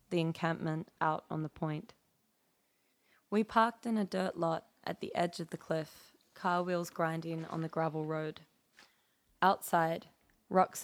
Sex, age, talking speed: female, 20-39, 150 wpm